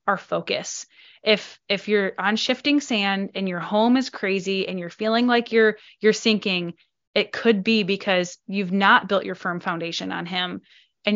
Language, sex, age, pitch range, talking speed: English, female, 20-39, 195-240 Hz, 175 wpm